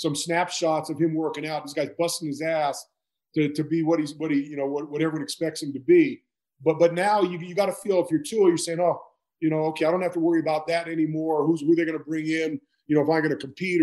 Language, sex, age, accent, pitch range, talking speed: English, male, 40-59, American, 160-190 Hz, 275 wpm